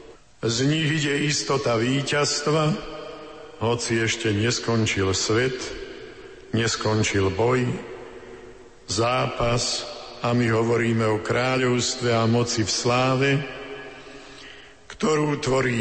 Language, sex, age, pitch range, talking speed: Slovak, male, 50-69, 110-135 Hz, 85 wpm